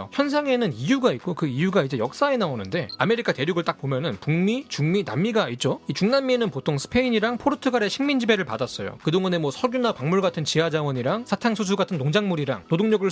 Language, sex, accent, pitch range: Korean, male, native, 165-225 Hz